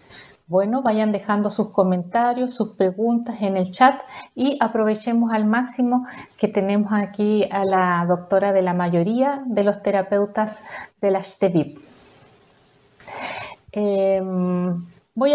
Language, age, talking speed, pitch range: Spanish, 30-49, 115 wpm, 185-230 Hz